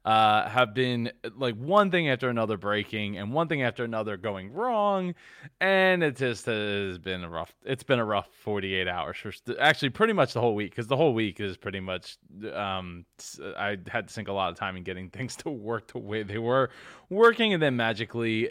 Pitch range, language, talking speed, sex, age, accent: 105-145 Hz, English, 210 wpm, male, 20-39, American